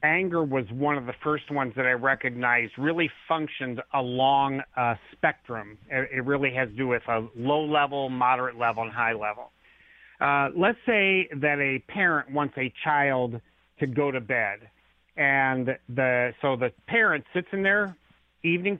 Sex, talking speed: male, 165 wpm